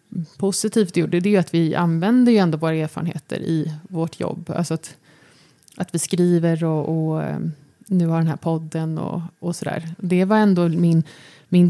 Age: 20-39